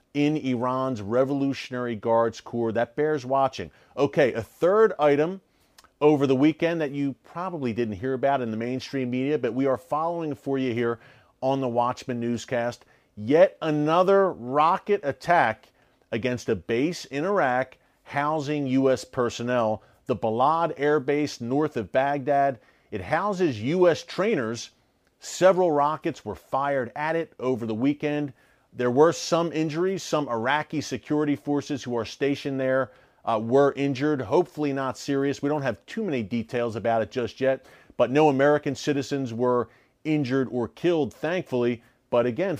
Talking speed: 150 wpm